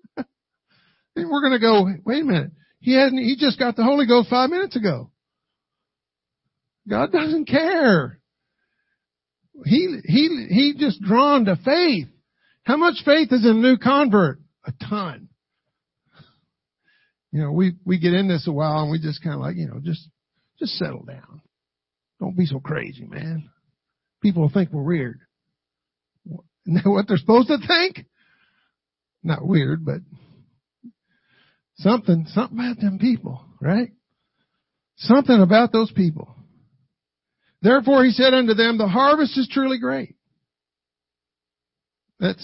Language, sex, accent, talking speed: English, male, American, 135 wpm